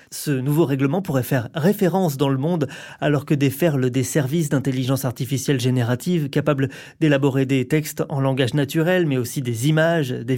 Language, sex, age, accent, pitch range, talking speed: French, male, 30-49, French, 135-170 Hz, 175 wpm